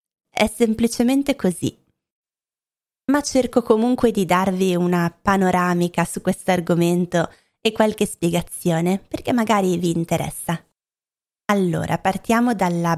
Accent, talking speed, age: native, 105 wpm, 20-39